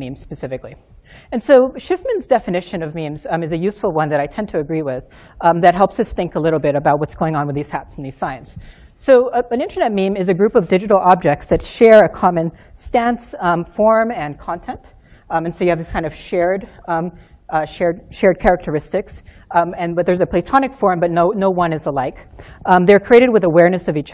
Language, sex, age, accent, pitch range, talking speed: English, female, 40-59, American, 155-200 Hz, 225 wpm